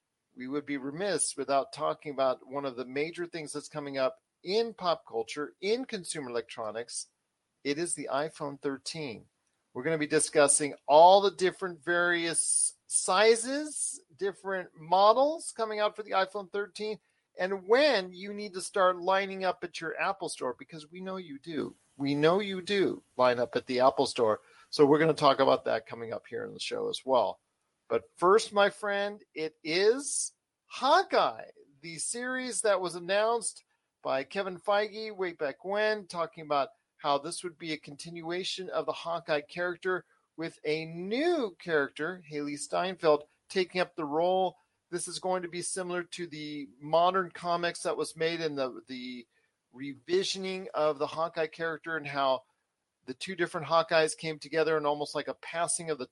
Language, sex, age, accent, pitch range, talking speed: English, male, 40-59, American, 150-195 Hz, 175 wpm